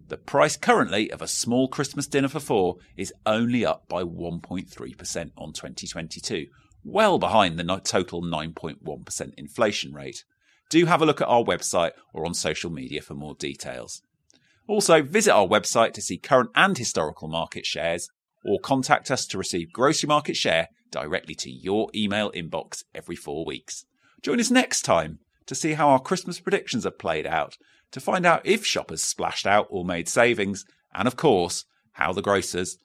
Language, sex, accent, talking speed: English, male, British, 170 wpm